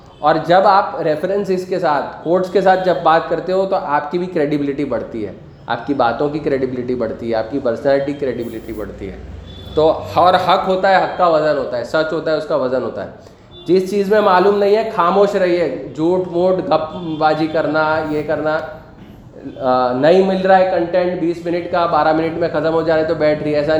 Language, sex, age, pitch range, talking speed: Urdu, male, 20-39, 140-170 Hz, 205 wpm